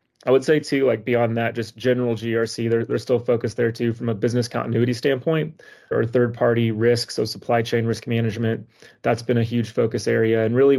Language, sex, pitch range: English, male, 115-125 Hz